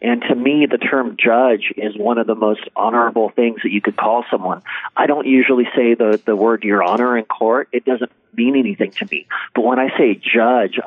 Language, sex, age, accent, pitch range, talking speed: English, male, 40-59, American, 110-130 Hz, 220 wpm